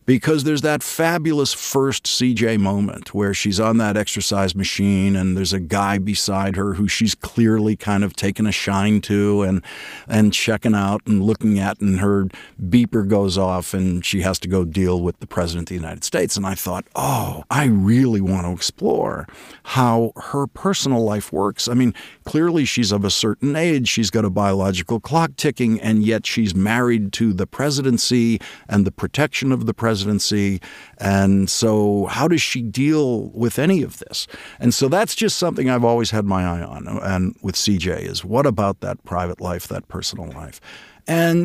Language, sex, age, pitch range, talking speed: English, male, 50-69, 95-125 Hz, 185 wpm